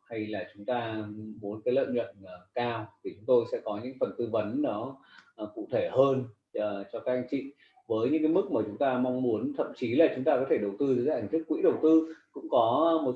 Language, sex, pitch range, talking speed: Vietnamese, male, 125-190 Hz, 255 wpm